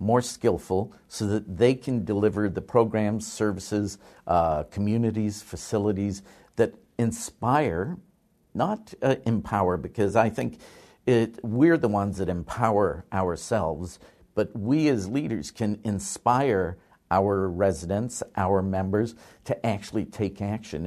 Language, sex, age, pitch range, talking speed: English, male, 50-69, 95-115 Hz, 120 wpm